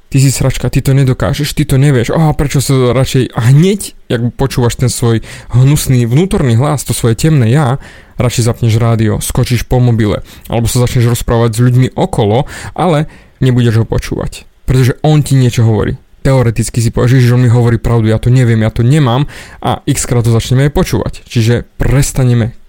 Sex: male